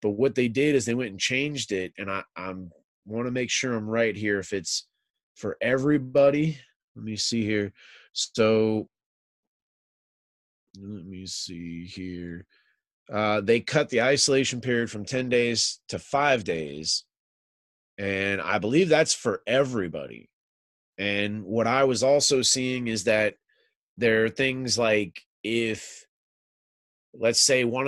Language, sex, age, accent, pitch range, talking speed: English, male, 30-49, American, 100-130 Hz, 140 wpm